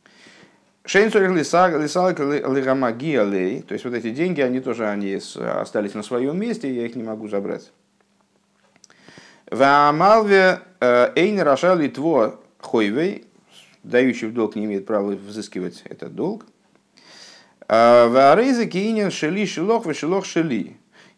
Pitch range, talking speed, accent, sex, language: 120-185 Hz, 75 wpm, native, male, Russian